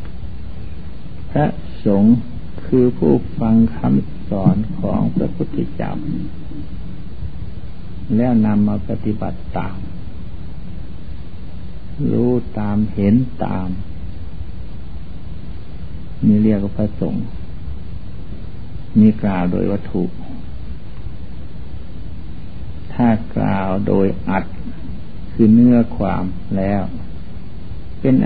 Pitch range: 85-105 Hz